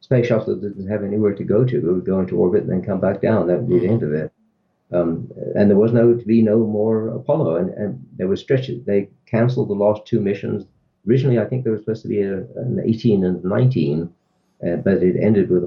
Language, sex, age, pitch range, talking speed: English, male, 50-69, 90-115 Hz, 255 wpm